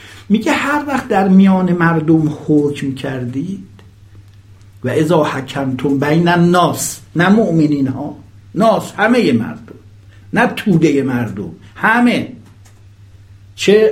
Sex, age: male, 60-79